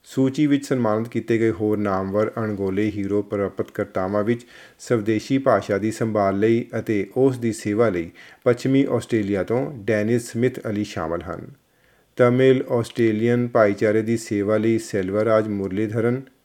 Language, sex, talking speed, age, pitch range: Punjabi, male, 140 wpm, 40-59, 105-125 Hz